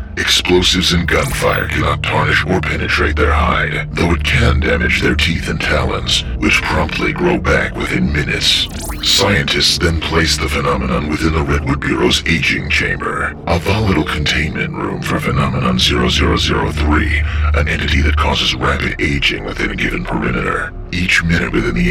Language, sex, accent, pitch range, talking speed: English, female, American, 75-85 Hz, 150 wpm